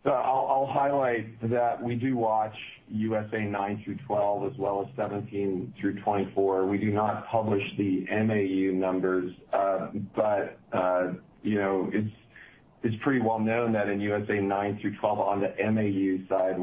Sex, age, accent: male, 40-59, American